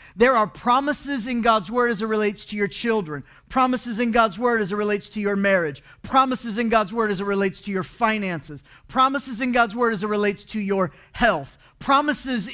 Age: 40-59